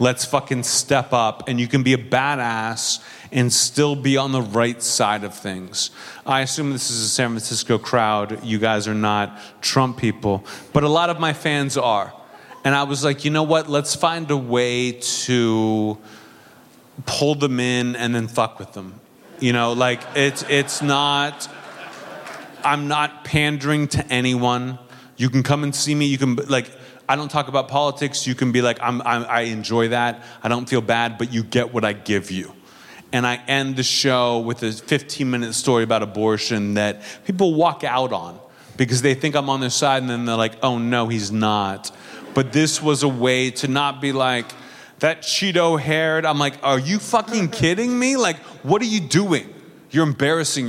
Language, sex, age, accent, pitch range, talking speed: English, male, 30-49, American, 115-145 Hz, 190 wpm